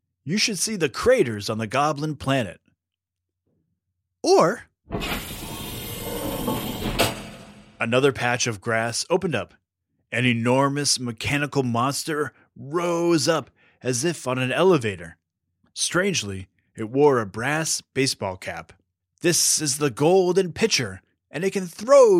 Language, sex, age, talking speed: English, male, 30-49, 115 wpm